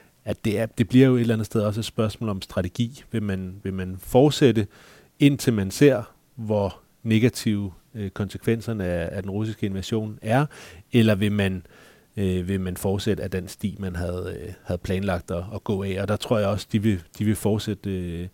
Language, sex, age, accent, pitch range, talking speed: Danish, male, 30-49, native, 90-105 Hz, 205 wpm